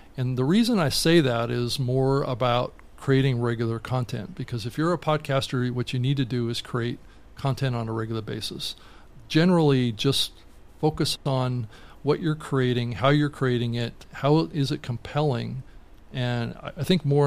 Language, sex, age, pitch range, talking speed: English, male, 40-59, 120-140 Hz, 165 wpm